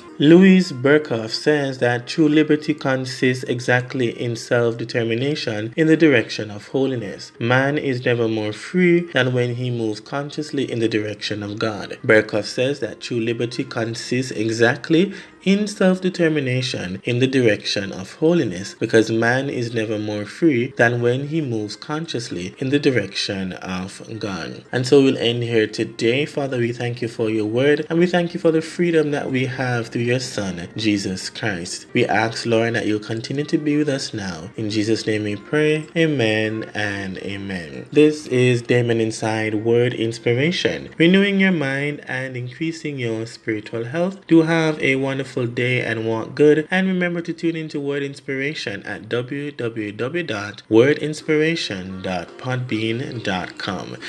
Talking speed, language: 155 wpm, English